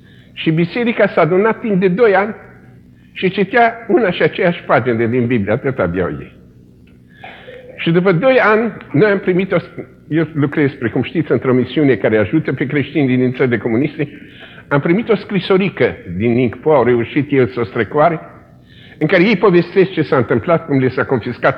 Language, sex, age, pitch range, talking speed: Romanian, male, 50-69, 110-170 Hz, 180 wpm